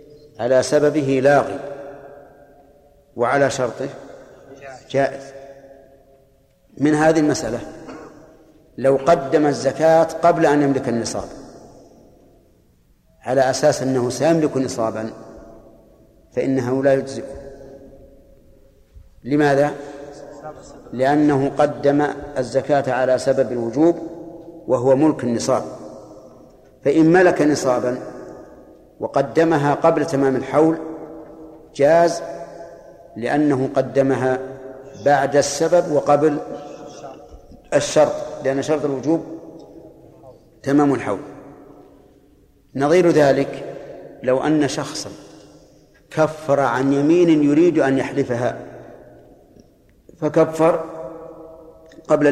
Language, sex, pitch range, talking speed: Arabic, male, 135-155 Hz, 75 wpm